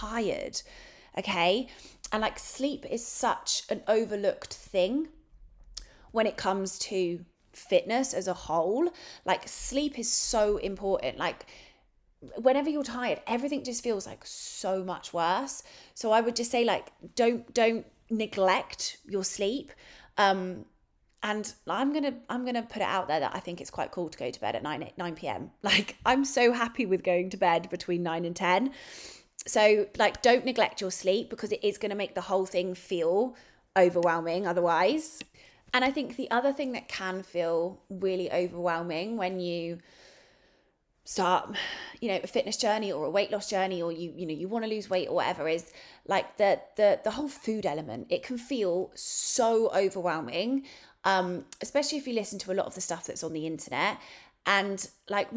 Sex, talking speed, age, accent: female, 180 wpm, 20-39, British